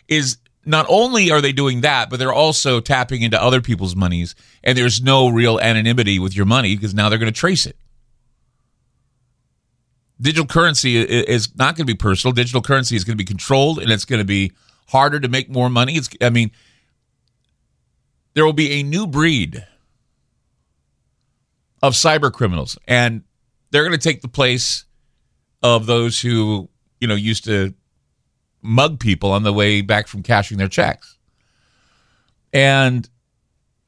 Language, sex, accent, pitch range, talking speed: English, male, American, 110-140 Hz, 165 wpm